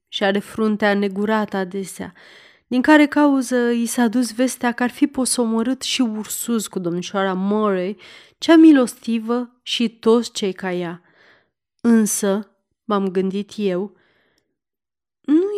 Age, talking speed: 30-49, 125 wpm